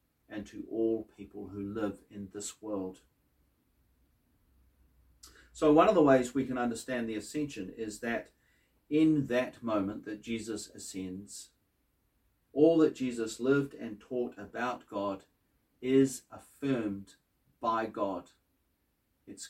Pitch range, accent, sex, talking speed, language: 80-125 Hz, Australian, male, 125 wpm, English